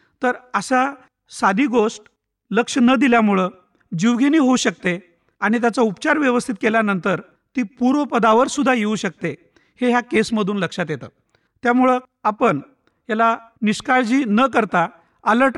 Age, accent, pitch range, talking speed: 50-69, native, 185-245 Hz, 90 wpm